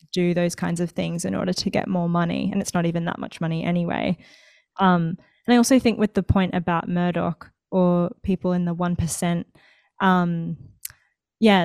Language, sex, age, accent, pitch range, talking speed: English, female, 20-39, Australian, 170-190 Hz, 185 wpm